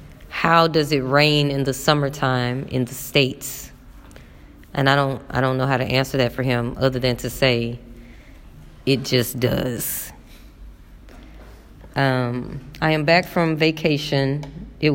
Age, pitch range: 20-39, 130-165 Hz